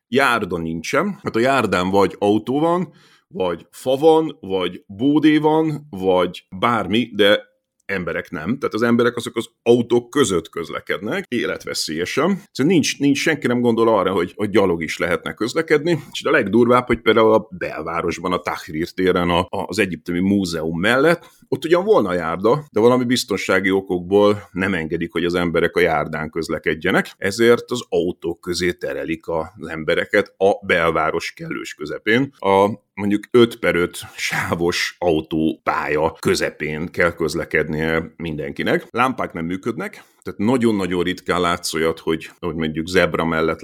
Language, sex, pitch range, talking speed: Hungarian, male, 85-125 Hz, 145 wpm